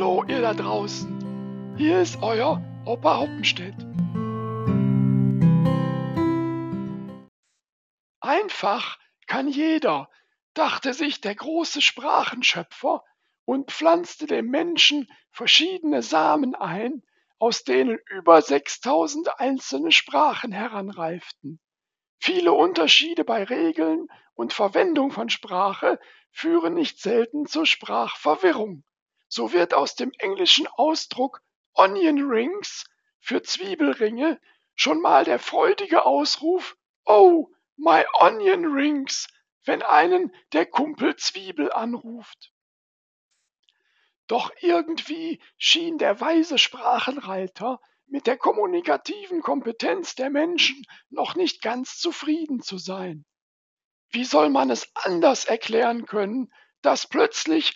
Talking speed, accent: 100 wpm, German